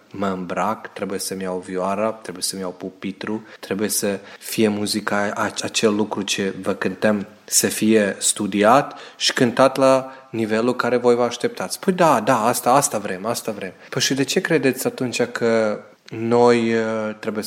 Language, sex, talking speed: Romanian, male, 160 wpm